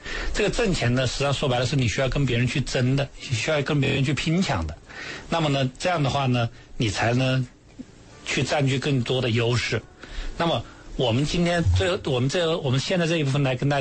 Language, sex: Chinese, male